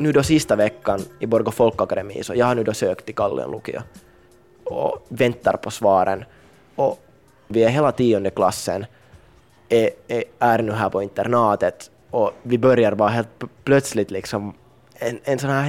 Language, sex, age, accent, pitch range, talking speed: Swedish, male, 20-39, Finnish, 105-130 Hz, 155 wpm